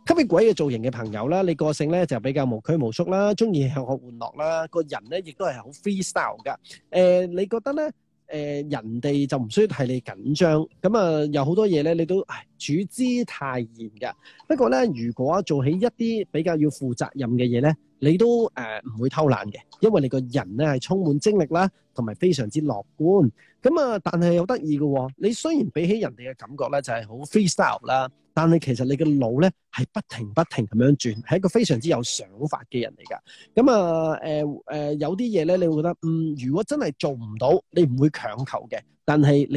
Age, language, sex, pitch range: 30-49, Chinese, male, 130-185 Hz